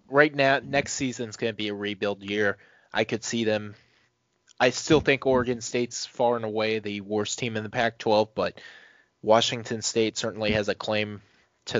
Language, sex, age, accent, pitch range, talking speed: English, male, 20-39, American, 105-120 Hz, 185 wpm